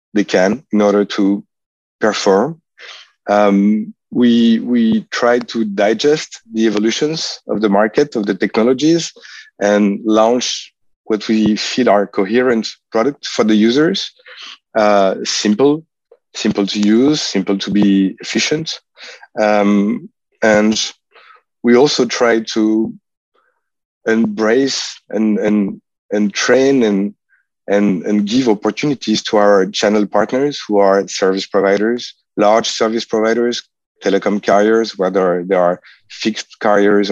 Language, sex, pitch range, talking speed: English, male, 100-120 Hz, 120 wpm